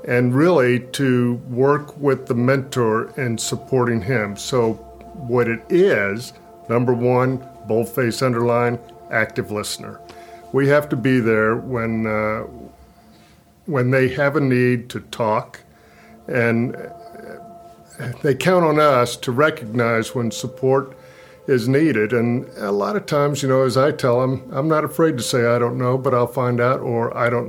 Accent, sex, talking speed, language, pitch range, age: American, male, 155 wpm, English, 115-135 Hz, 50-69